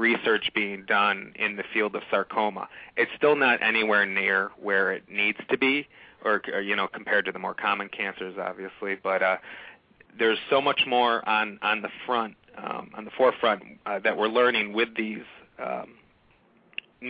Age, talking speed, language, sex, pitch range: 30-49, 175 wpm, English, male, 100-115 Hz